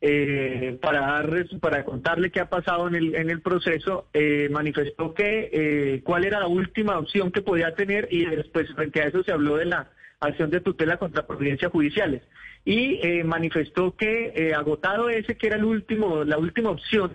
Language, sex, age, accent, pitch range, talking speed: Spanish, male, 30-49, Colombian, 150-195 Hz, 190 wpm